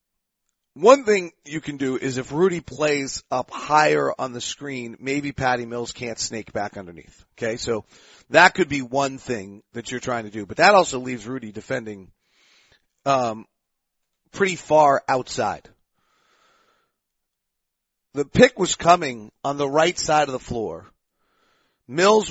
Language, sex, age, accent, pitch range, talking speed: English, male, 40-59, American, 120-155 Hz, 150 wpm